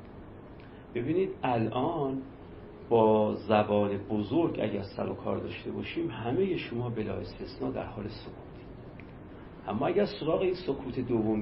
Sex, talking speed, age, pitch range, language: male, 115 wpm, 50-69, 105-155 Hz, Persian